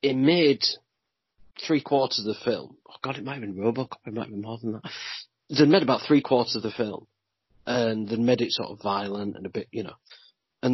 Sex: male